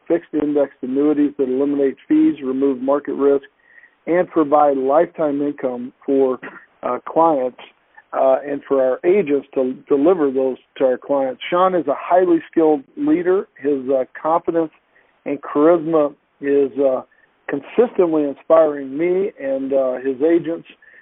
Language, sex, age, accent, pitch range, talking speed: English, male, 50-69, American, 140-175 Hz, 135 wpm